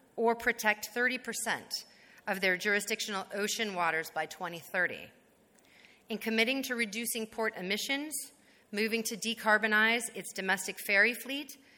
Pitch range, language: 185-235 Hz, English